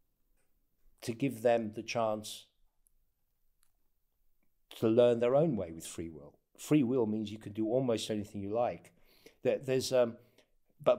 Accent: British